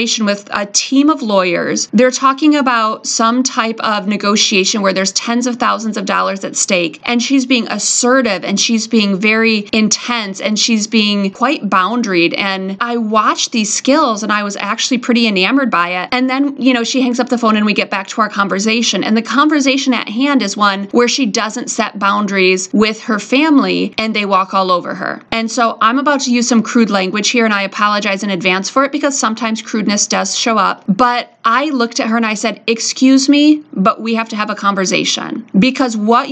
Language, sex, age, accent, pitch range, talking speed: English, female, 30-49, American, 200-245 Hz, 210 wpm